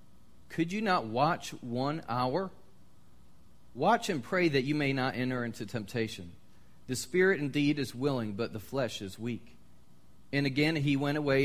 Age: 40-59